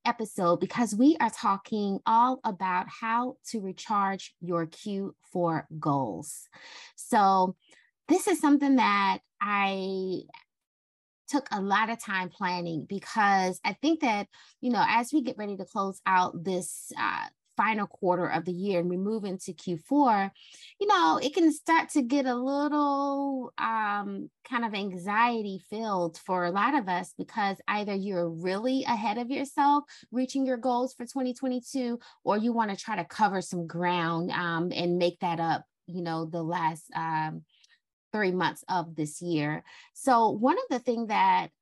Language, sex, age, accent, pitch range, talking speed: English, female, 20-39, American, 180-245 Hz, 160 wpm